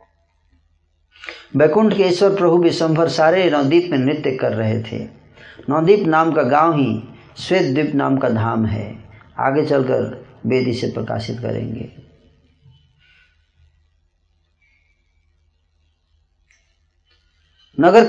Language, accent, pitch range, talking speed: Hindi, native, 115-165 Hz, 95 wpm